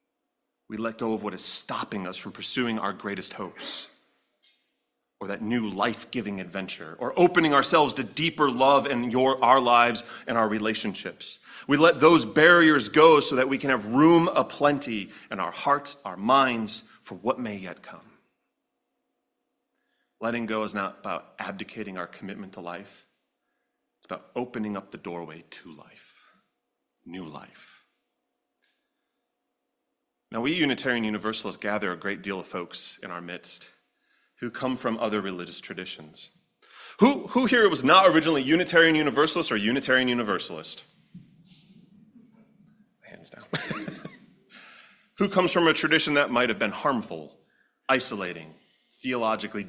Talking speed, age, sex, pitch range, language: 140 wpm, 30-49, male, 105-160 Hz, English